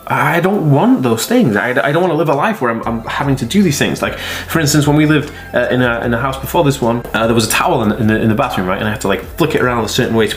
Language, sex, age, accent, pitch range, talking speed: English, male, 20-39, British, 105-135 Hz, 340 wpm